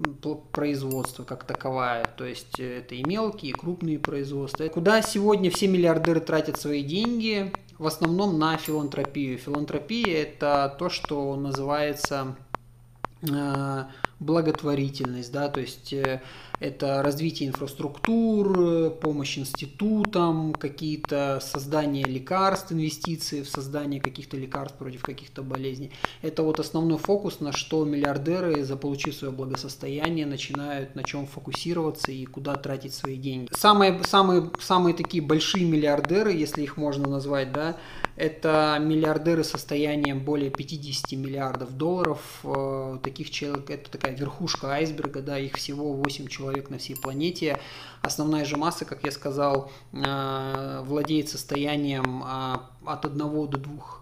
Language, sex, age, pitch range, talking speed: Russian, male, 20-39, 135-155 Hz, 125 wpm